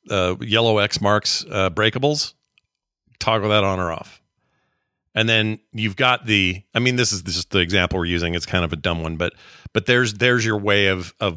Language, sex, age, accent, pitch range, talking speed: English, male, 40-59, American, 90-110 Hz, 205 wpm